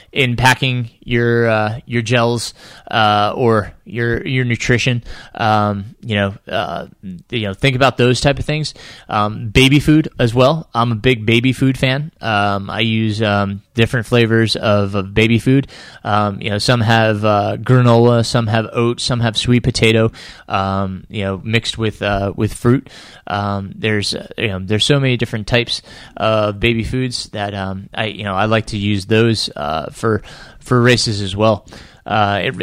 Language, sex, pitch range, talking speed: English, male, 100-120 Hz, 175 wpm